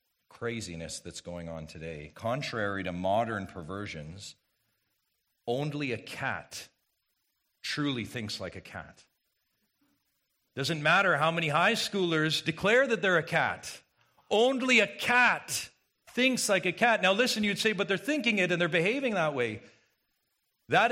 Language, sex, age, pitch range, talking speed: English, male, 40-59, 160-220 Hz, 140 wpm